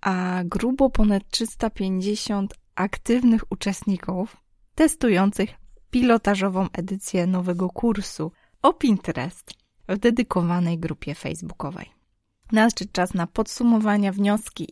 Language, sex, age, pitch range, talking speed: Polish, female, 20-39, 180-230 Hz, 90 wpm